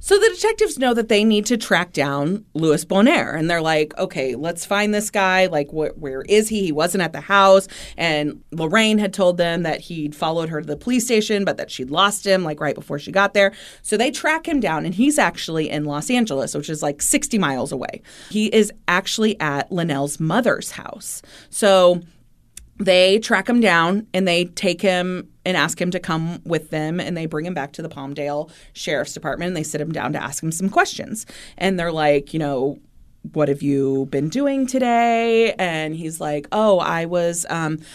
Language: English